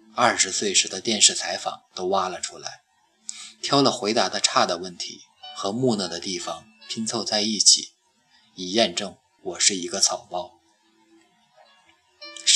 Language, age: Chinese, 20-39